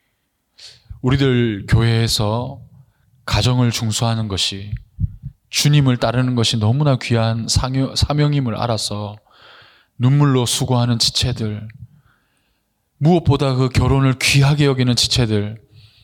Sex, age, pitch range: male, 20-39, 105-130 Hz